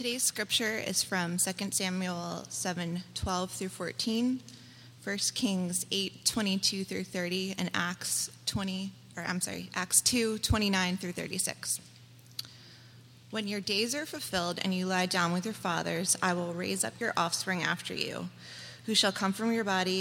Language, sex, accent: English, female, American